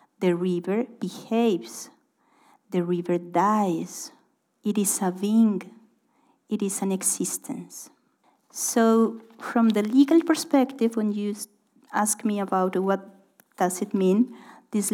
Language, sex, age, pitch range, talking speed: German, female, 40-59, 200-245 Hz, 115 wpm